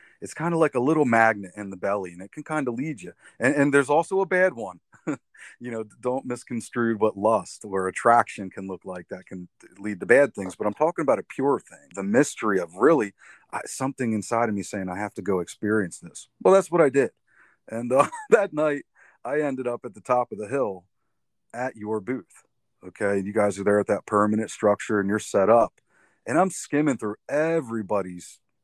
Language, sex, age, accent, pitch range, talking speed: English, male, 30-49, American, 100-125 Hz, 215 wpm